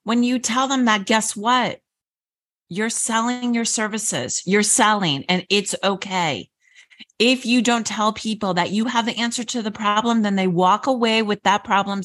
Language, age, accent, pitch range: English, 40-59, American, 185-245 Hz